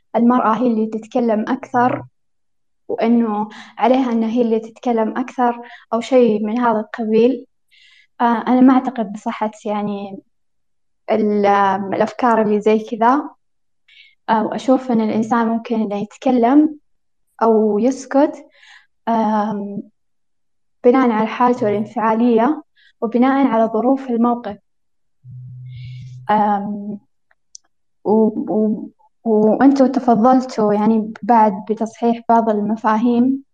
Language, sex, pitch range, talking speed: Arabic, female, 215-250 Hz, 95 wpm